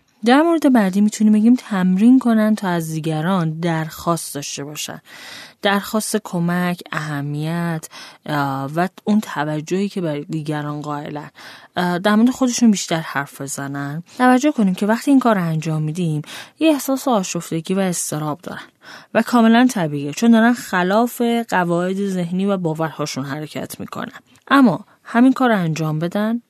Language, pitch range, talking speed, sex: Persian, 155-220 Hz, 140 wpm, female